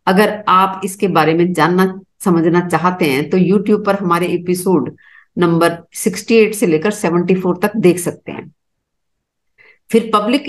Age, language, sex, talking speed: 50-69, Hindi, female, 145 wpm